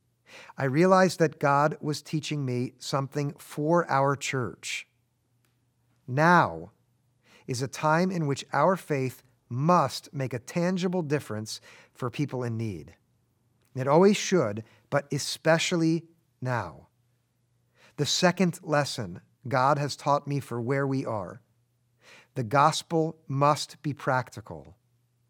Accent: American